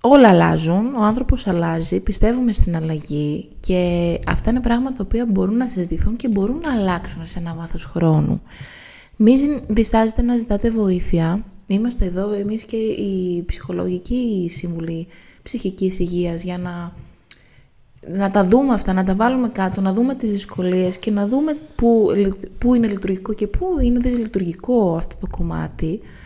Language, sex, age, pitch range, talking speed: Greek, female, 20-39, 175-225 Hz, 155 wpm